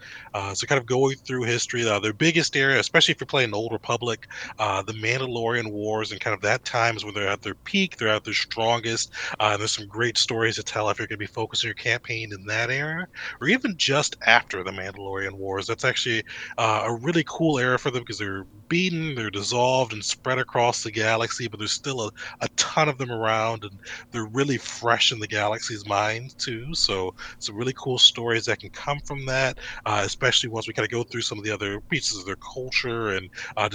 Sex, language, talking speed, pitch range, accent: male, English, 225 wpm, 105-130 Hz, American